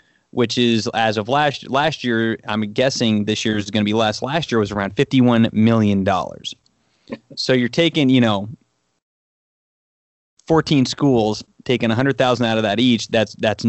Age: 30-49